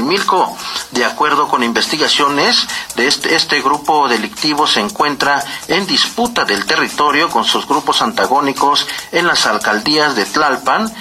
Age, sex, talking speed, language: 40-59, male, 135 wpm, Spanish